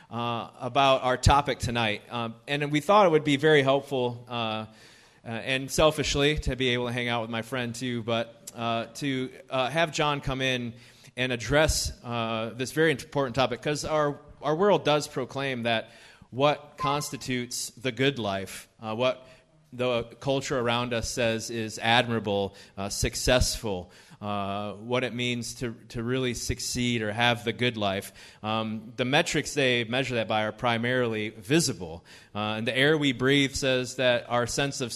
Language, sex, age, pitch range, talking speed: English, male, 30-49, 110-130 Hz, 170 wpm